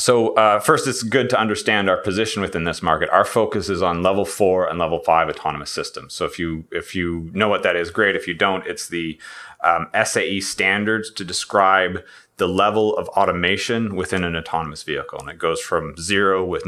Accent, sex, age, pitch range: American, male, 30-49, 90-110 Hz